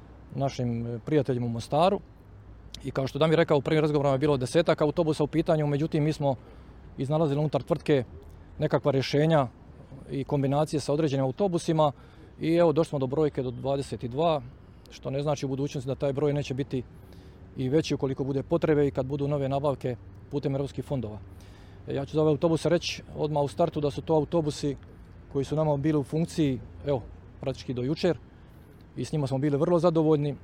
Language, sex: Croatian, male